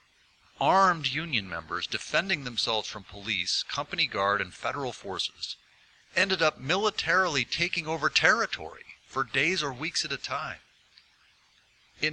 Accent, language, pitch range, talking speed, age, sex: American, English, 110-155 Hz, 130 wpm, 50-69, male